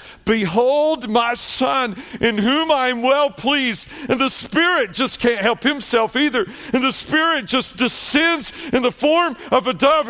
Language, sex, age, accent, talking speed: English, male, 60-79, American, 165 wpm